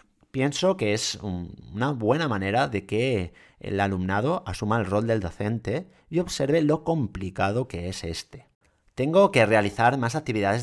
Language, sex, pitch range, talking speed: Spanish, male, 100-145 Hz, 150 wpm